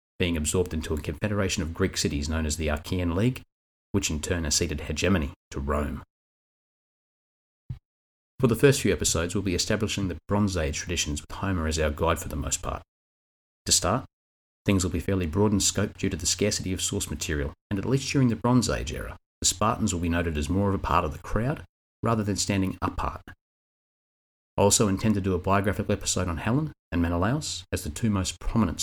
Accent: Australian